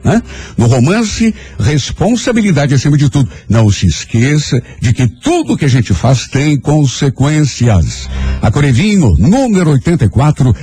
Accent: Brazilian